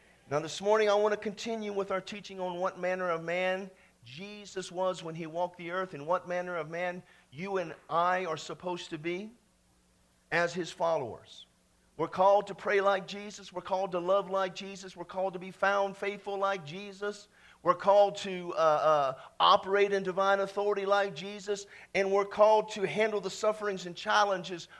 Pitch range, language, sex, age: 155-200 Hz, English, male, 50-69